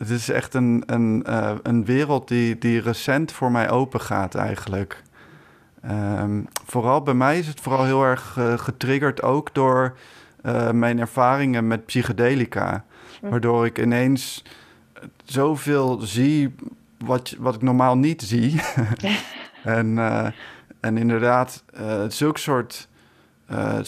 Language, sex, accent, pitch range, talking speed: Dutch, male, Dutch, 120-145 Hz, 125 wpm